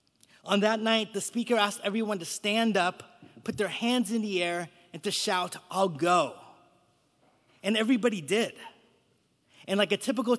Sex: male